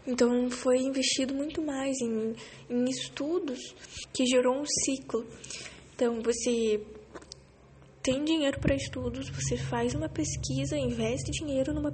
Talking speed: 125 wpm